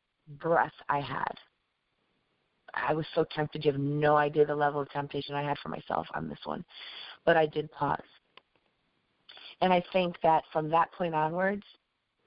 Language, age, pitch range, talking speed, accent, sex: English, 30-49, 150-170 Hz, 165 wpm, American, female